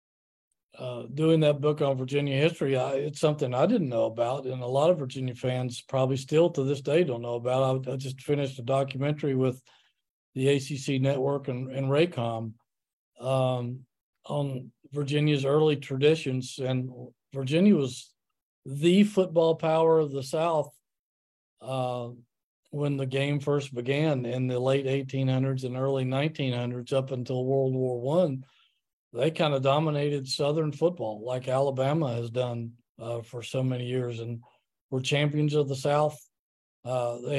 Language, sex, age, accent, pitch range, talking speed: English, male, 40-59, American, 125-150 Hz, 155 wpm